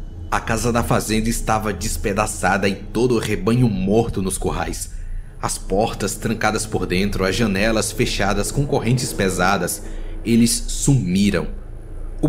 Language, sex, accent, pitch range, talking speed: Portuguese, male, Brazilian, 95-120 Hz, 130 wpm